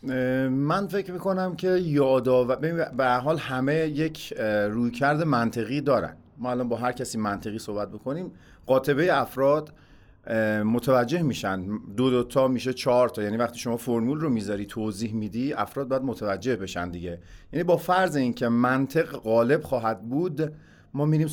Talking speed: 155 wpm